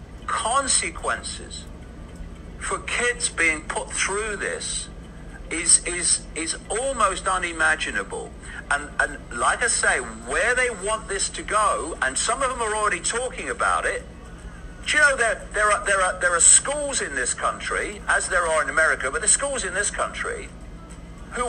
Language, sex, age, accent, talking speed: English, male, 50-69, British, 160 wpm